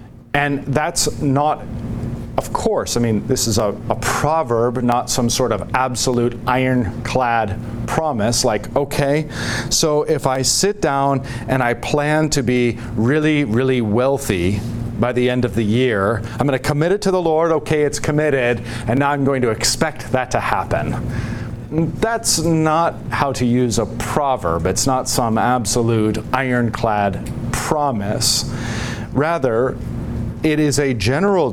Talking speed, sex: 145 wpm, male